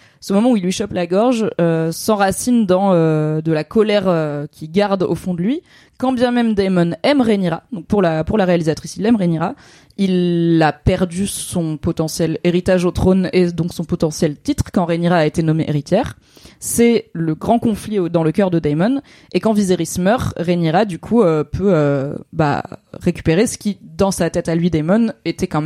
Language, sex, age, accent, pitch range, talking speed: French, female, 20-39, French, 165-205 Hz, 205 wpm